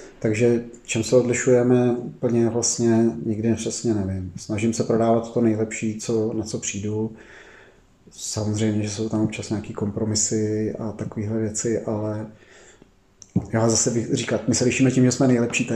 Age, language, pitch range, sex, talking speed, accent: 30-49, Czech, 110-120 Hz, male, 155 wpm, native